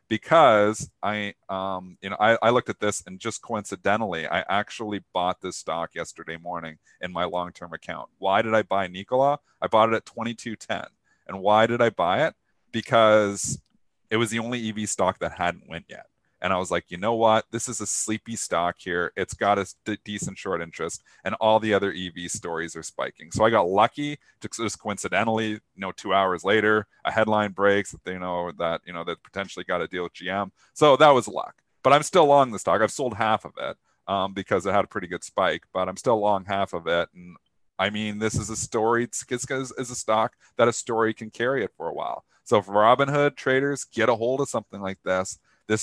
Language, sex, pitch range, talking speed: English, male, 95-115 Hz, 225 wpm